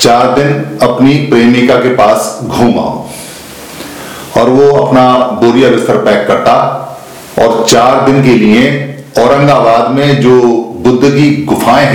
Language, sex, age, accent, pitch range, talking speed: Hindi, male, 50-69, native, 120-140 Hz, 125 wpm